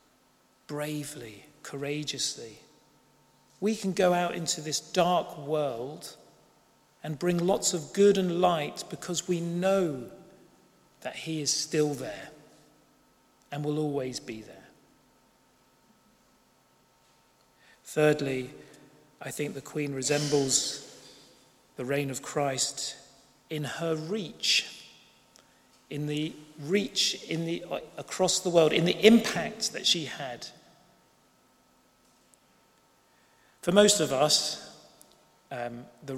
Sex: male